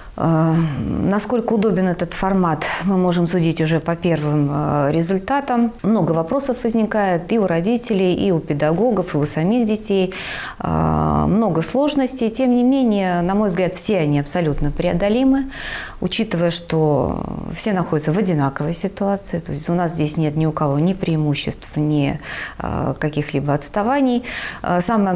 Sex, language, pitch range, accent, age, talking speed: female, Russian, 155-205 Hz, native, 30-49, 140 wpm